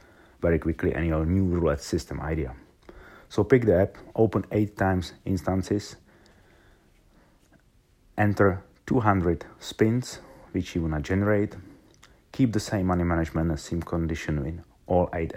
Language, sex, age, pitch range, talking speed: English, male, 30-49, 80-100 Hz, 130 wpm